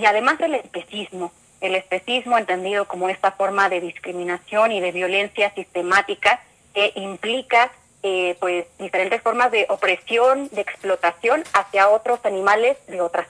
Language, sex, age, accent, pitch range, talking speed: Spanish, female, 30-49, Mexican, 185-225 Hz, 140 wpm